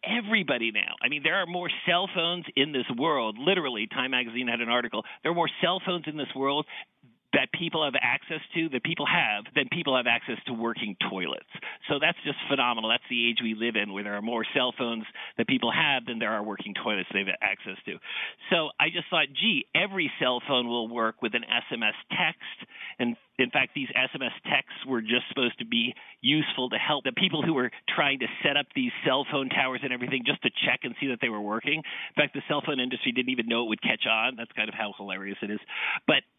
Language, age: English, 50-69